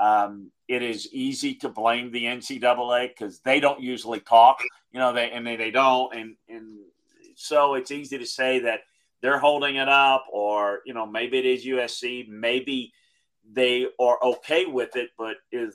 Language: English